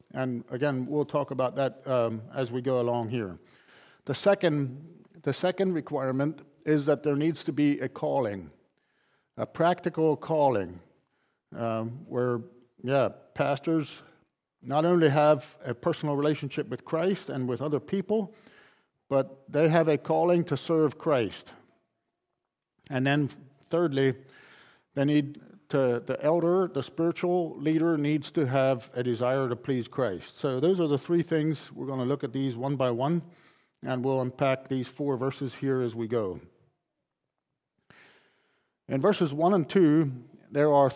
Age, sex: 50-69, male